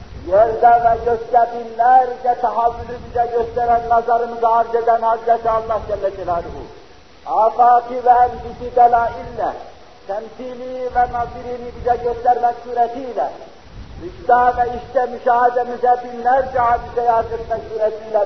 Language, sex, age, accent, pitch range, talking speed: Turkish, male, 50-69, native, 185-235 Hz, 100 wpm